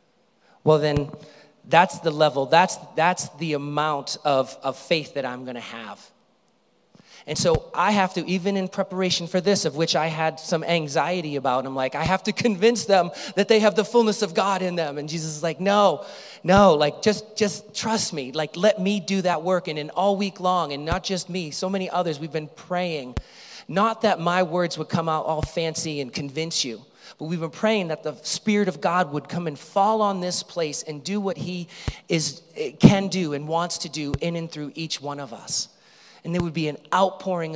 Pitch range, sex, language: 155-195 Hz, male, English